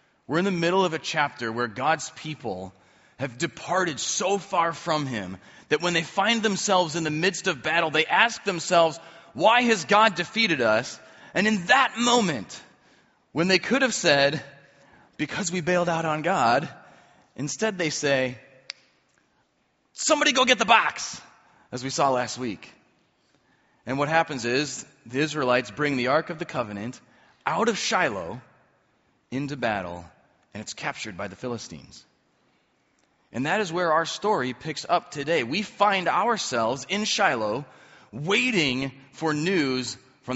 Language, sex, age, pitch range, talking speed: English, male, 30-49, 135-200 Hz, 155 wpm